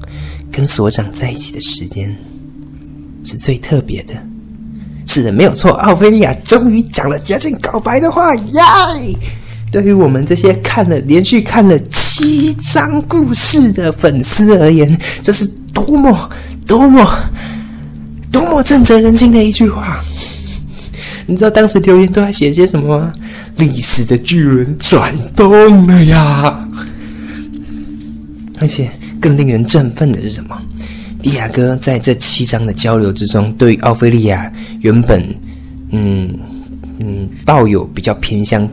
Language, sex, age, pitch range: Chinese, male, 20-39, 95-160 Hz